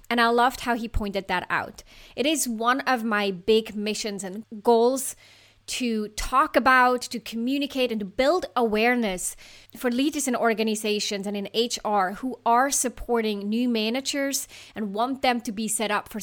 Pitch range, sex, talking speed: 210-255 Hz, female, 170 wpm